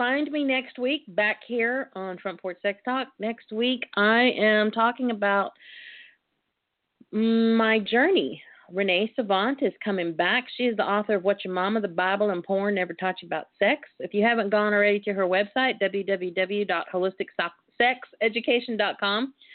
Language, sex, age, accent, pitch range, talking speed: English, female, 40-59, American, 190-250 Hz, 150 wpm